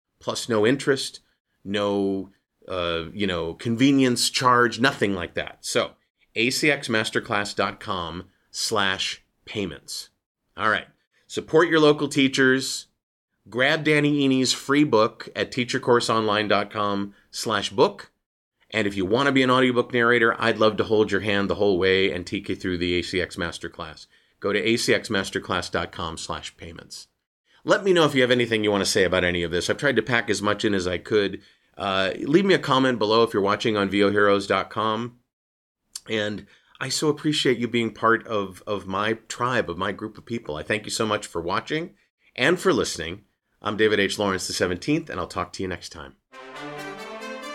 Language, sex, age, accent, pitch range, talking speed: English, male, 30-49, American, 100-130 Hz, 170 wpm